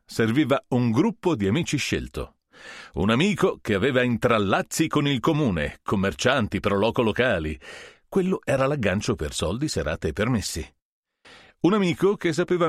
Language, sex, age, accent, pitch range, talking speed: Italian, male, 40-59, native, 95-140 Hz, 135 wpm